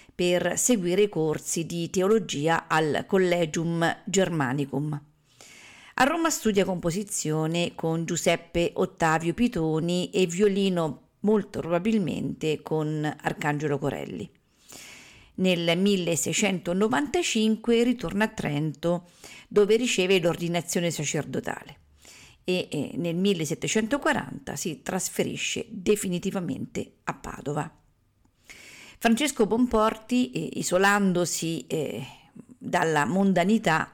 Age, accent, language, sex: 50-69, native, Italian, female